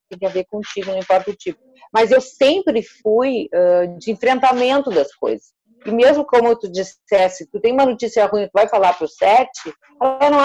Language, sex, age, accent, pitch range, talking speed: Portuguese, female, 40-59, Brazilian, 200-275 Hz, 210 wpm